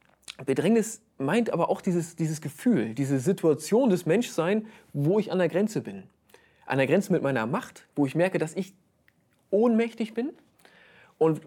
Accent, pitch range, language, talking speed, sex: German, 145-200 Hz, German, 160 wpm, male